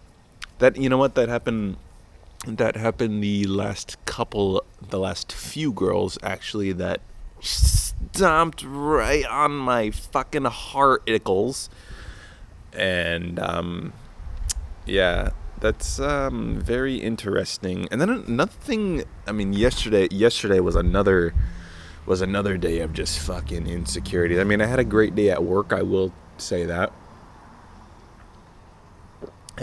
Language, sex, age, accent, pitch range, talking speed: English, male, 20-39, American, 85-105 Hz, 125 wpm